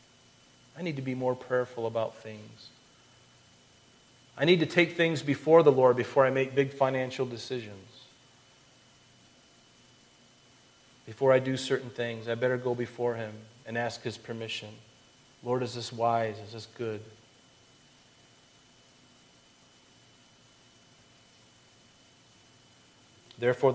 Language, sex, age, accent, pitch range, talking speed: English, male, 40-59, American, 115-135 Hz, 110 wpm